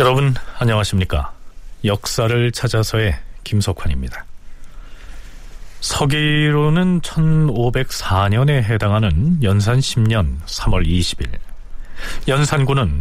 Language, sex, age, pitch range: Korean, male, 40-59, 100-150 Hz